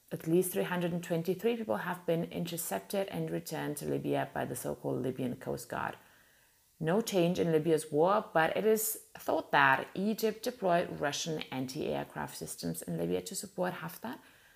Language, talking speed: English, 155 wpm